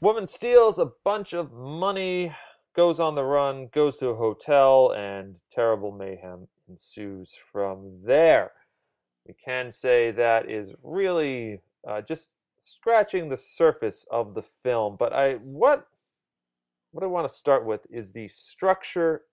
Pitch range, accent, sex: 105-155 Hz, American, male